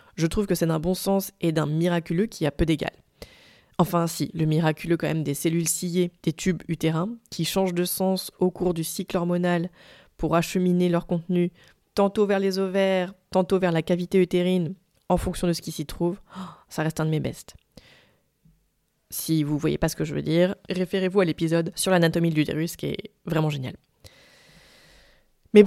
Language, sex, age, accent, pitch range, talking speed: French, female, 20-39, French, 165-190 Hz, 195 wpm